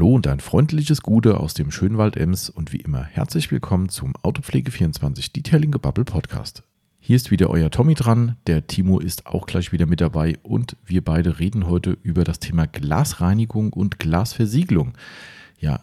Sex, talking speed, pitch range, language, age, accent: male, 170 wpm, 85-115 Hz, German, 40-59, German